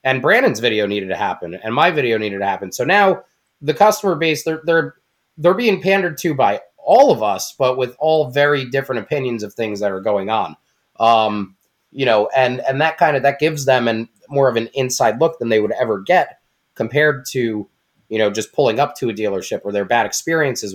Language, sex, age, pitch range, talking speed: English, male, 20-39, 110-150 Hz, 215 wpm